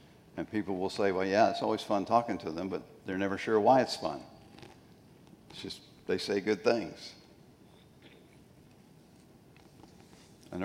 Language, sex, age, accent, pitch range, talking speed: English, male, 60-79, American, 95-115 Hz, 145 wpm